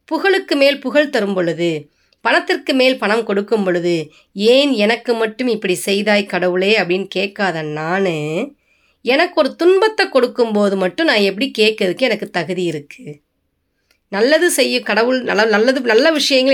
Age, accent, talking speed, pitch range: 20-39, native, 130 wpm, 185-255 Hz